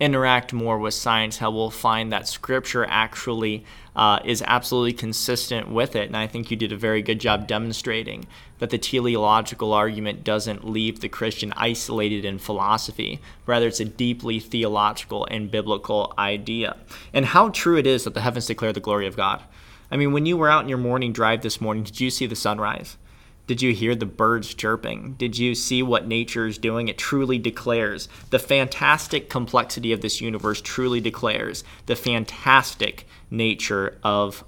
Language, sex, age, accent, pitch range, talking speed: English, male, 20-39, American, 110-125 Hz, 180 wpm